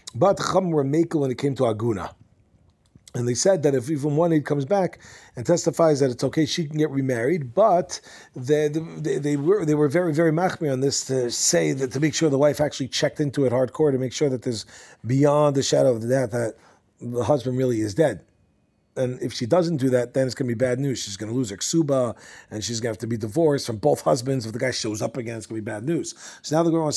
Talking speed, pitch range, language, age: 260 wpm, 125-155 Hz, English, 40-59